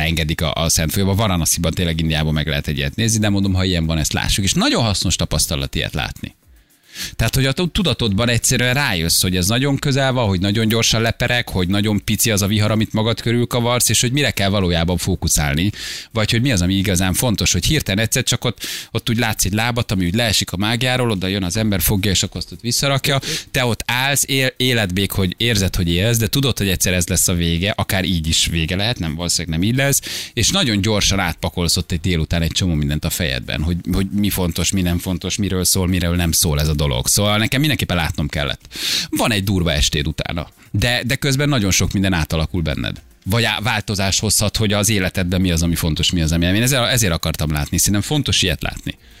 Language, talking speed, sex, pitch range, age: Hungarian, 220 wpm, male, 85-115 Hz, 30-49